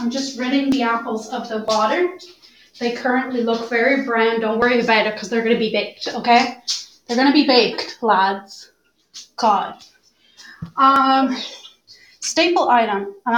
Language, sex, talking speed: English, female, 150 wpm